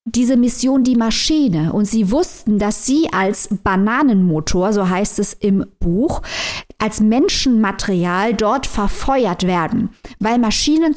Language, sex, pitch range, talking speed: German, female, 200-235 Hz, 125 wpm